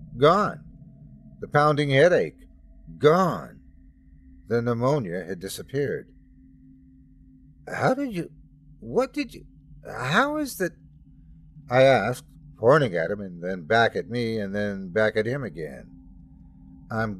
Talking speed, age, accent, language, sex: 120 wpm, 50-69, American, English, male